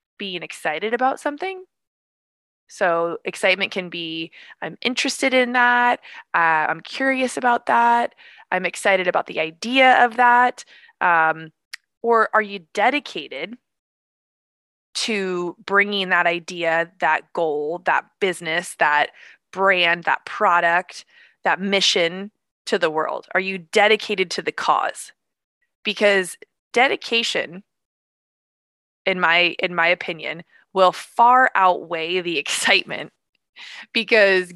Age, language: 20-39, English